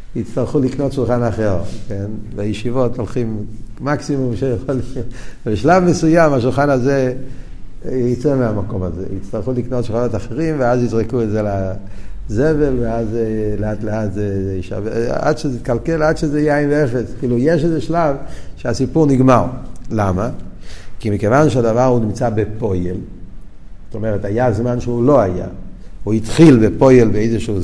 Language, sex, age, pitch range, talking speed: Hebrew, male, 50-69, 110-140 Hz, 130 wpm